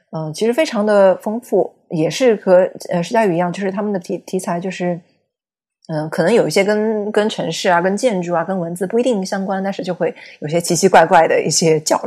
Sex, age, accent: female, 20-39, native